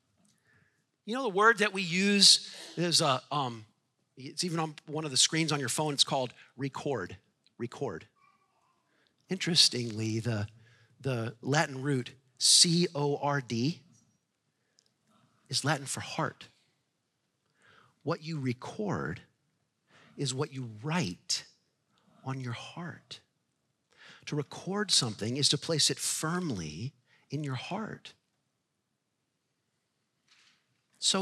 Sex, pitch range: male, 130-195 Hz